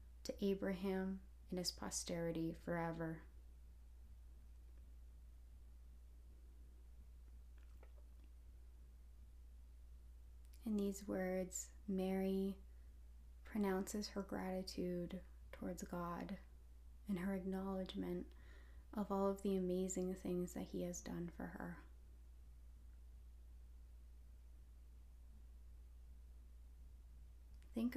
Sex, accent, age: female, American, 20-39